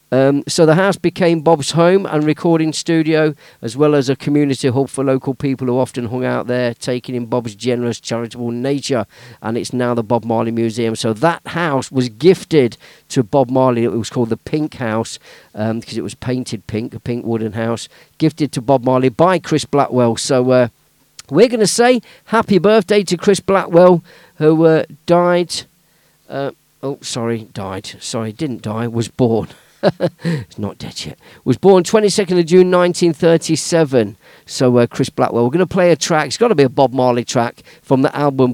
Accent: British